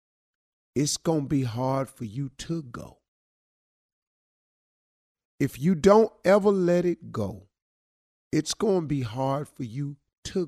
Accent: American